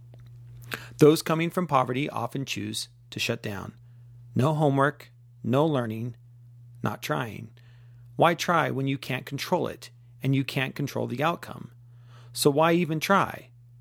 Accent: American